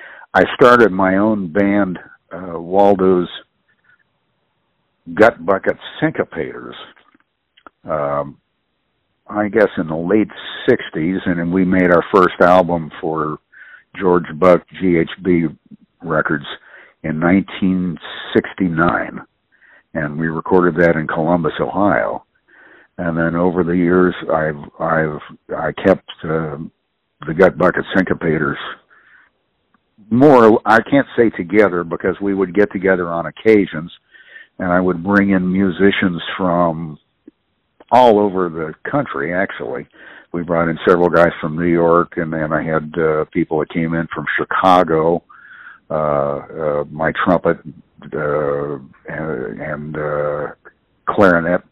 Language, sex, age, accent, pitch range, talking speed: English, male, 60-79, American, 80-95 Hz, 120 wpm